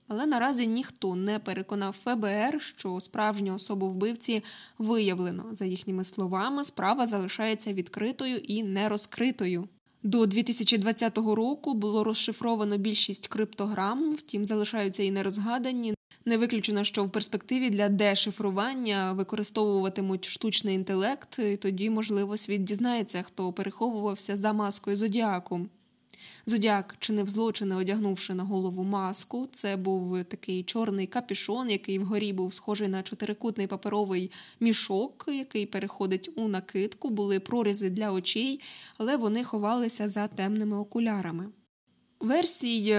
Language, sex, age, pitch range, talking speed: Ukrainian, female, 10-29, 195-225 Hz, 120 wpm